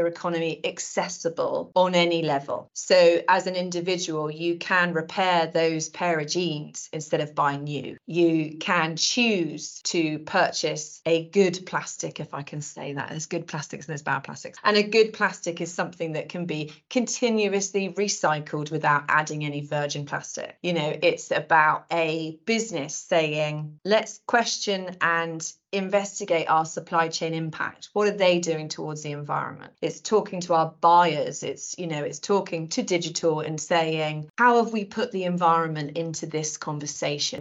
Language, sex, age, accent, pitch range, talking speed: English, female, 30-49, British, 155-205 Hz, 160 wpm